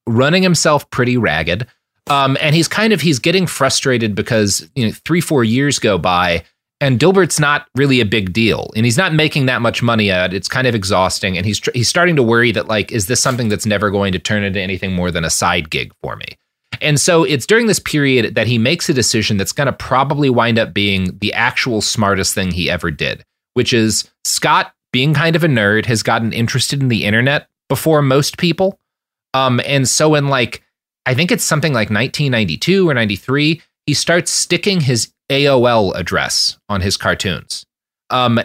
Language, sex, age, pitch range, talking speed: English, male, 30-49, 105-145 Hz, 200 wpm